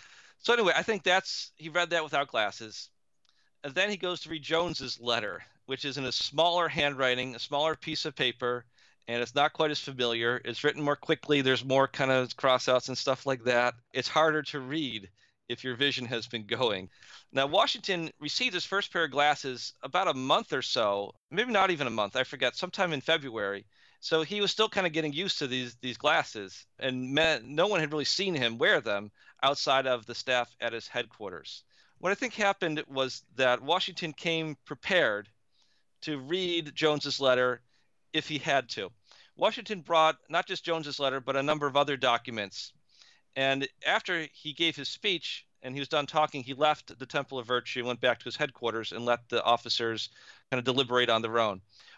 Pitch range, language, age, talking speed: 125-160 Hz, English, 40-59, 195 wpm